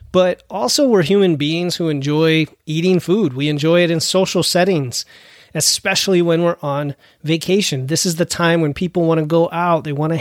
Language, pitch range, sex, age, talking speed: English, 150-180 Hz, male, 30-49, 195 wpm